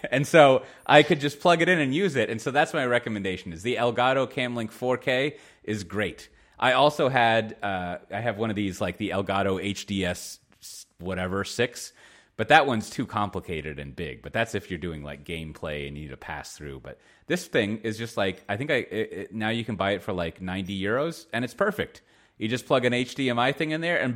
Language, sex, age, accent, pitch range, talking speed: English, male, 30-49, American, 85-115 Hz, 225 wpm